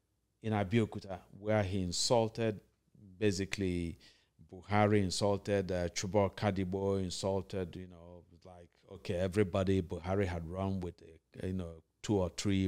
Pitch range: 95-110 Hz